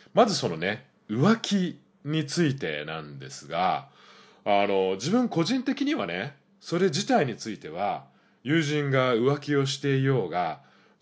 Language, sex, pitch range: Japanese, male, 95-150 Hz